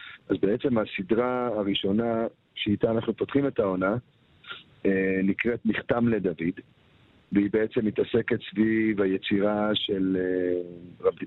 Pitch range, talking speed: 100-130 Hz, 100 wpm